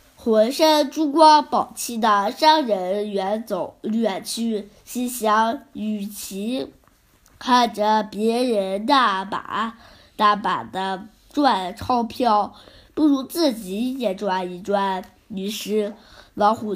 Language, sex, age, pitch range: Chinese, female, 10-29, 205-265 Hz